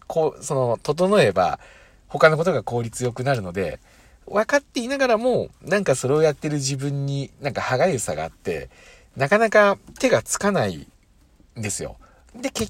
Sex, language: male, Japanese